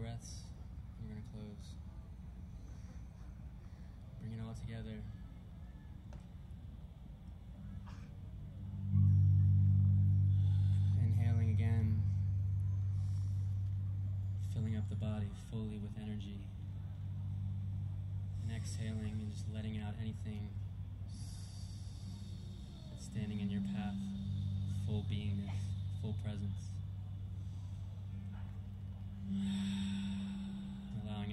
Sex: male